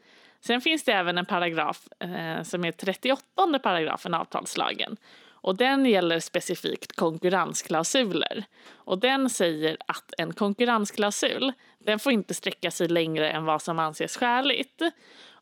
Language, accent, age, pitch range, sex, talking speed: Swedish, native, 20-39, 170-260 Hz, female, 120 wpm